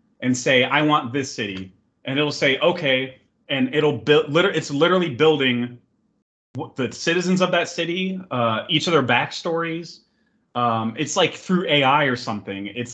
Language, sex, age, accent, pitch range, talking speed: English, male, 30-49, American, 110-135 Hz, 160 wpm